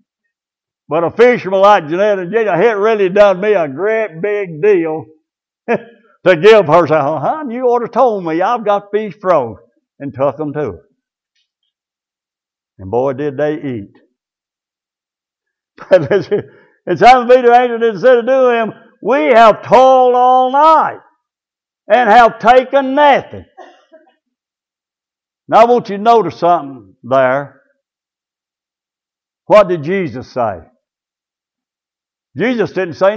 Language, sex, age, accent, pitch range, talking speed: English, male, 60-79, American, 175-250 Hz, 130 wpm